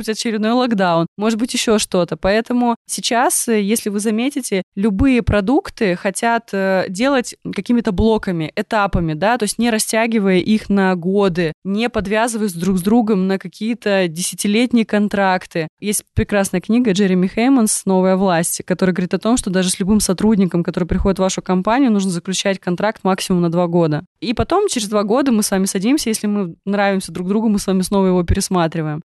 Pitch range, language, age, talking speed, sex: 185-225 Hz, Russian, 20-39, 170 wpm, female